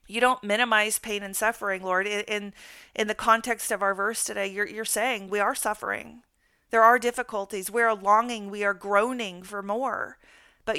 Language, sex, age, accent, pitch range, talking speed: English, female, 40-59, American, 195-225 Hz, 185 wpm